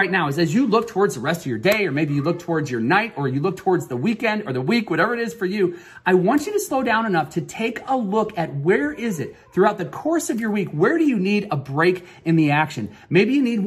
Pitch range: 150-200 Hz